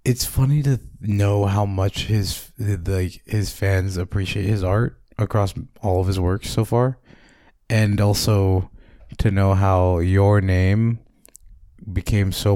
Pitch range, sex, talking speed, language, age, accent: 90-110 Hz, male, 140 wpm, English, 20-39, American